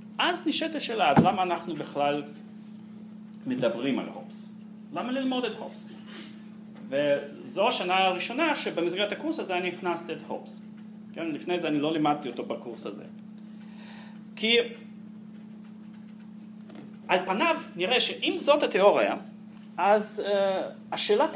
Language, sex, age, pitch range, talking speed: Hebrew, male, 40-59, 210-230 Hz, 120 wpm